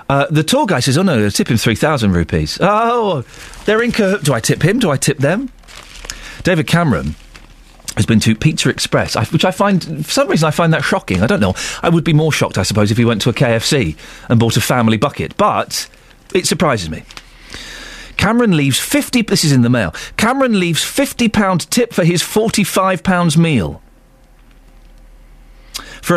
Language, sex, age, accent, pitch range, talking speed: English, male, 40-59, British, 115-190 Hz, 195 wpm